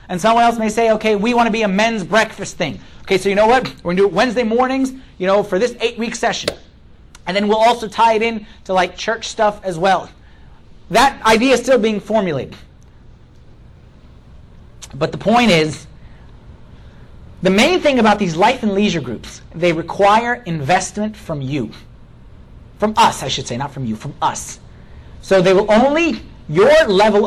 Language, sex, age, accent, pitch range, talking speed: English, male, 30-49, American, 155-215 Hz, 190 wpm